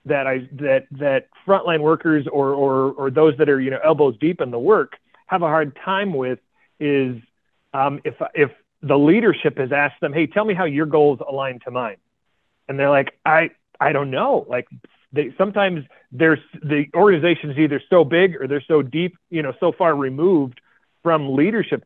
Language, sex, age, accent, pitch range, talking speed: English, male, 40-59, American, 140-175 Hz, 190 wpm